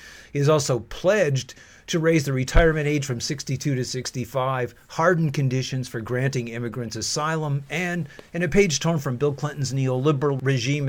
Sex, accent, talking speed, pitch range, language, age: male, American, 160 wpm, 125-155 Hz, English, 50-69